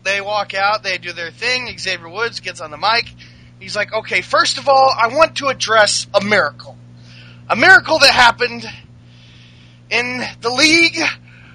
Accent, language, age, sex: American, English, 30-49, male